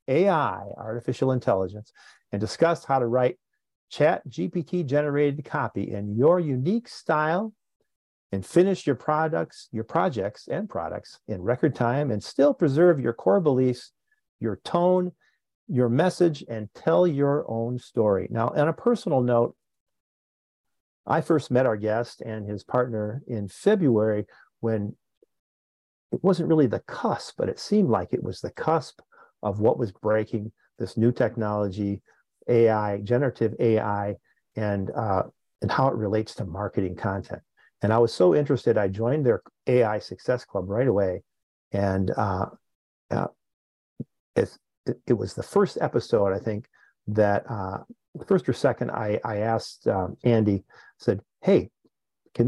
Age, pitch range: 50-69, 105-150 Hz